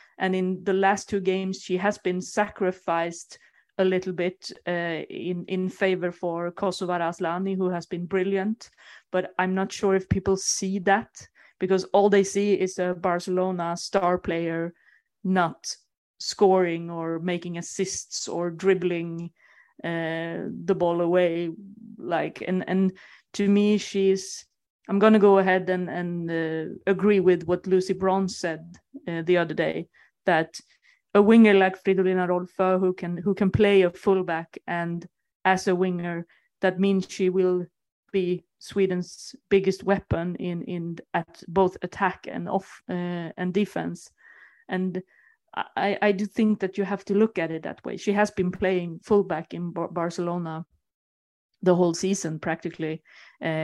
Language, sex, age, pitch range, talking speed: English, female, 30-49, 175-195 Hz, 150 wpm